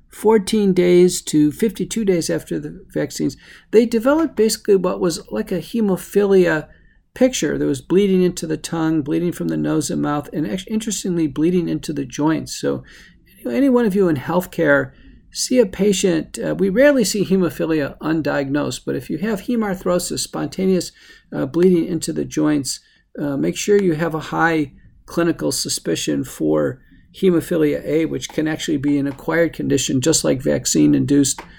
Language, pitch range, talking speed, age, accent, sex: English, 145-185 Hz, 160 wpm, 50-69, American, male